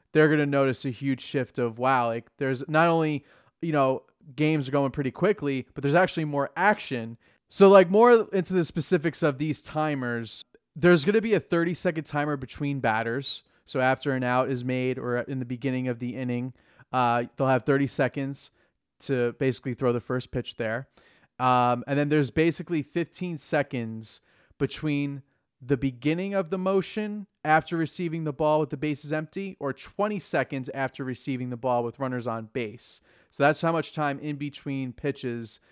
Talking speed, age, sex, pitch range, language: 185 wpm, 20-39, male, 125-155 Hz, English